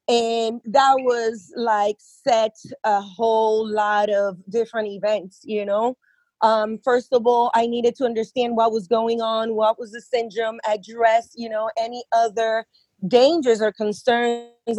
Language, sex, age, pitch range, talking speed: English, female, 30-49, 215-245 Hz, 150 wpm